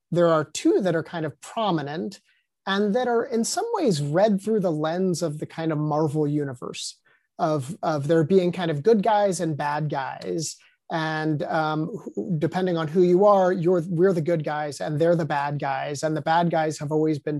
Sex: male